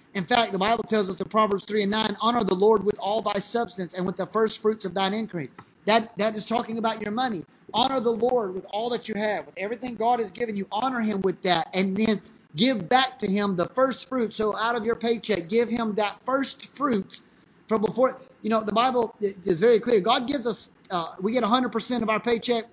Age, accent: 30-49, American